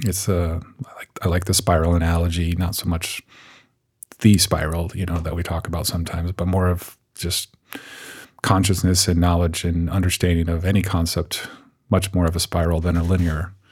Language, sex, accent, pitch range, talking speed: English, male, American, 85-95 Hz, 180 wpm